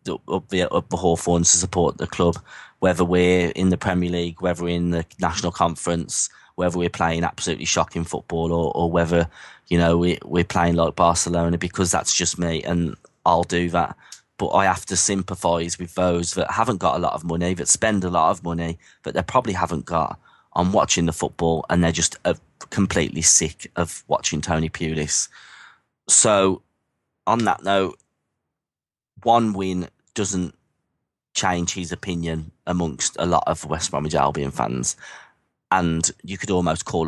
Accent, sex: British, male